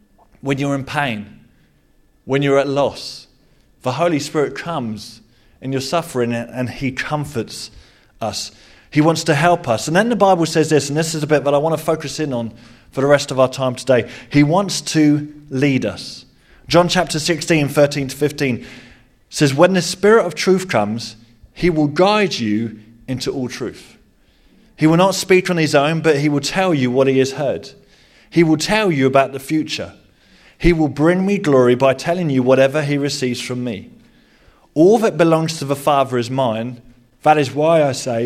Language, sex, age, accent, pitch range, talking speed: English, male, 30-49, British, 125-160 Hz, 195 wpm